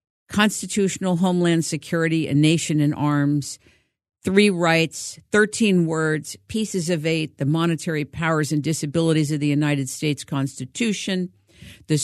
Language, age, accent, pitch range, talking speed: English, 50-69, American, 140-175 Hz, 125 wpm